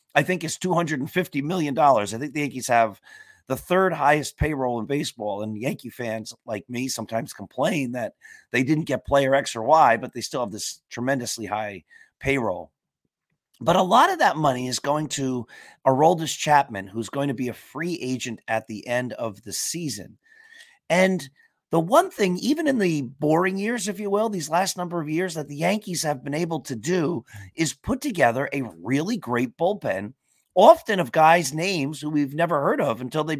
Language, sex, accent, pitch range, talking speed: English, male, American, 120-175 Hz, 190 wpm